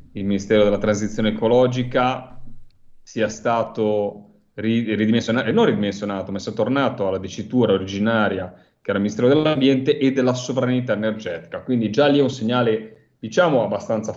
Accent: native